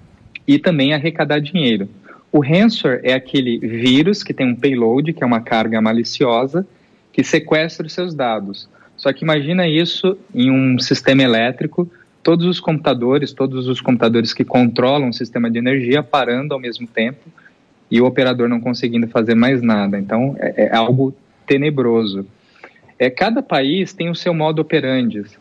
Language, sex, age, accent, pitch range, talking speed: Portuguese, male, 20-39, Brazilian, 125-160 Hz, 160 wpm